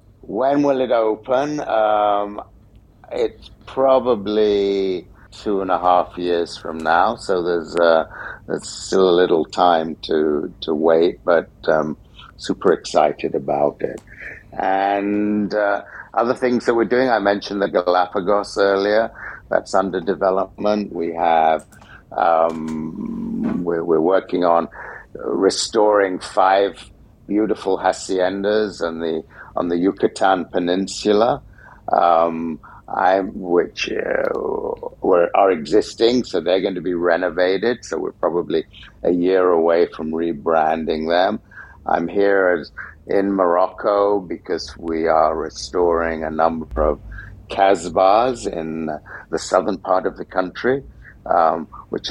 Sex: male